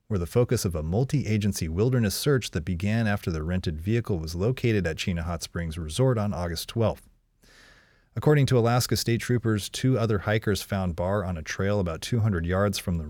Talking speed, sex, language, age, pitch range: 195 wpm, male, English, 40-59, 90-115 Hz